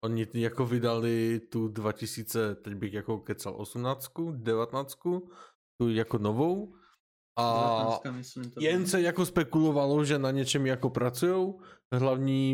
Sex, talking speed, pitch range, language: male, 120 wpm, 115-140 Hz, Czech